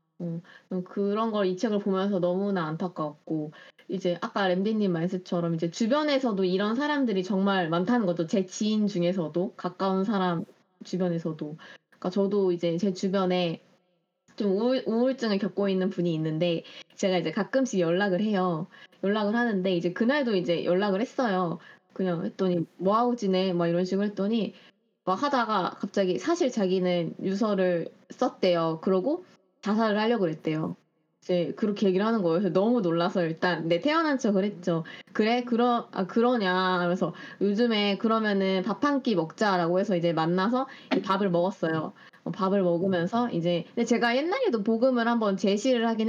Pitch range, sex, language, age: 175-220 Hz, female, Korean, 20-39